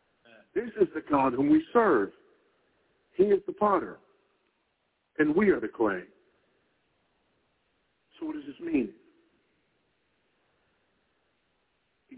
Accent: American